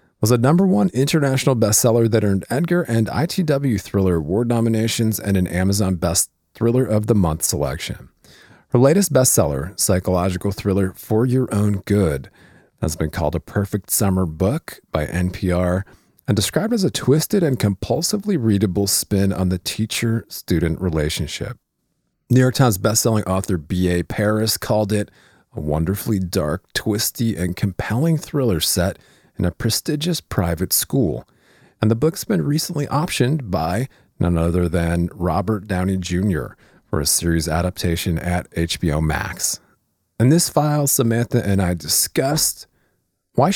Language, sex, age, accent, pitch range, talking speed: English, male, 40-59, American, 90-125 Hz, 145 wpm